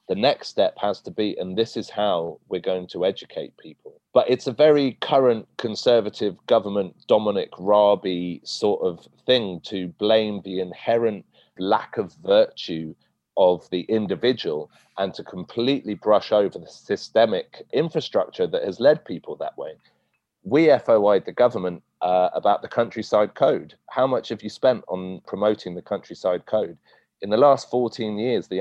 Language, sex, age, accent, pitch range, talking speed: English, male, 30-49, British, 95-140 Hz, 160 wpm